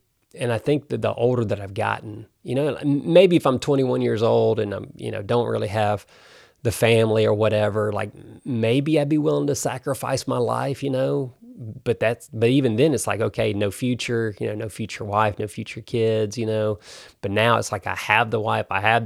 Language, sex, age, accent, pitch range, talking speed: English, male, 30-49, American, 105-120 Hz, 215 wpm